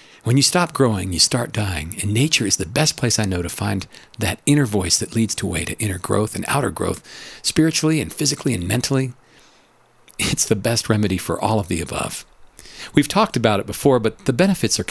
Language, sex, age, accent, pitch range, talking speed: English, male, 50-69, American, 100-140 Hz, 215 wpm